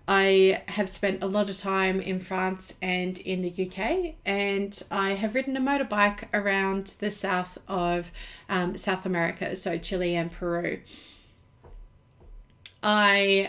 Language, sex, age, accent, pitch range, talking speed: English, female, 30-49, Australian, 180-200 Hz, 140 wpm